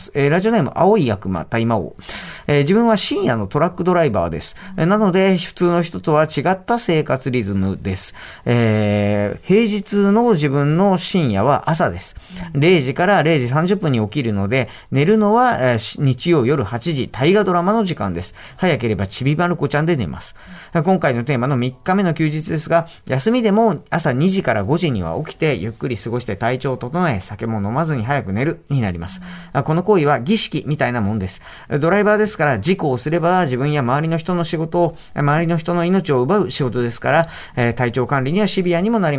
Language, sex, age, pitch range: Japanese, male, 40-59, 120-175 Hz